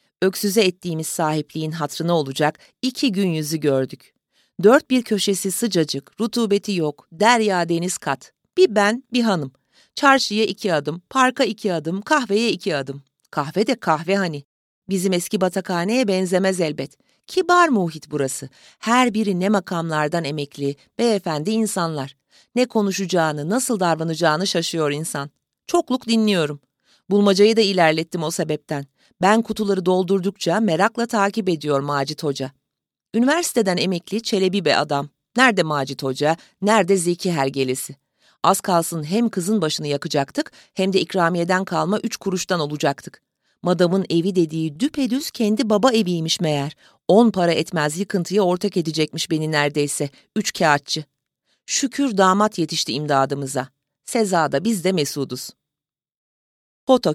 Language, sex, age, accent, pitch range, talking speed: Turkish, female, 40-59, native, 150-210 Hz, 130 wpm